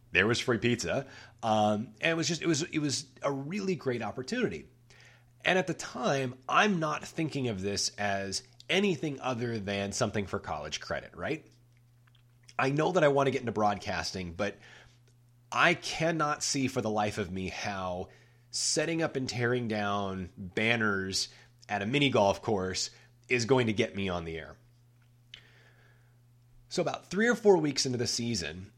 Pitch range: 105-130 Hz